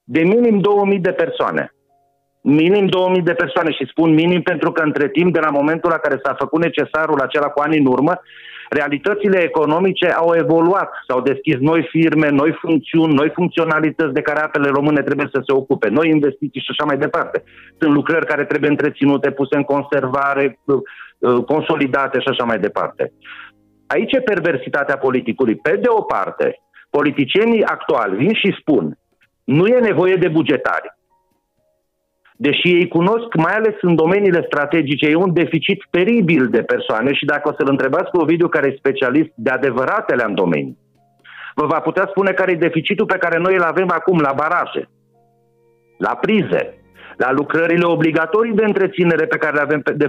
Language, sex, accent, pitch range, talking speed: Romanian, male, native, 140-180 Hz, 170 wpm